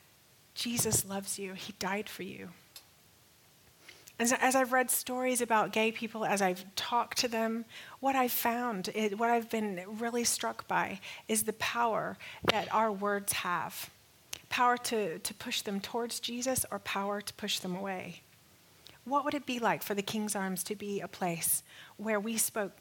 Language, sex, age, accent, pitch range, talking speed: English, female, 30-49, American, 185-230 Hz, 175 wpm